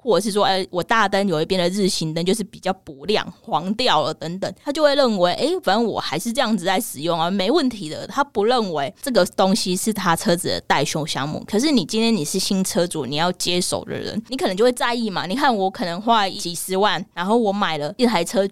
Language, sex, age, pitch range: Chinese, female, 20-39, 175-230 Hz